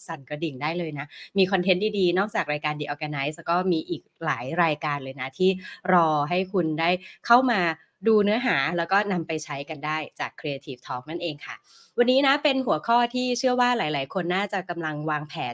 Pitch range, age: 150-210 Hz, 20-39